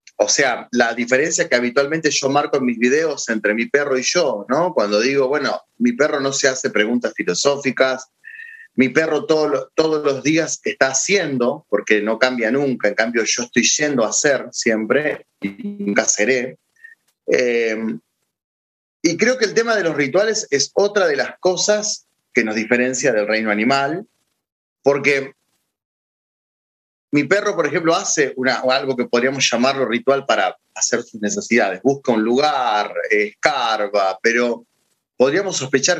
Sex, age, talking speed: male, 30-49, 155 wpm